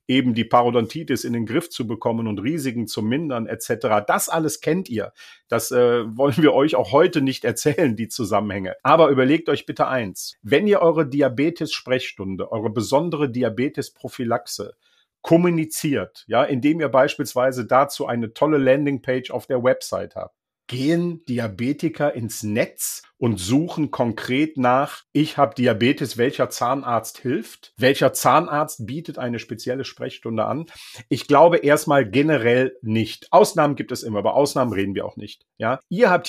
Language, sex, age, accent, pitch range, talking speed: German, male, 50-69, German, 120-155 Hz, 150 wpm